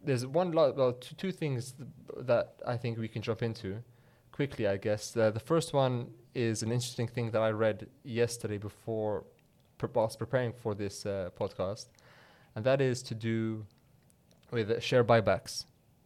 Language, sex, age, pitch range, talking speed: English, male, 20-39, 110-125 Hz, 180 wpm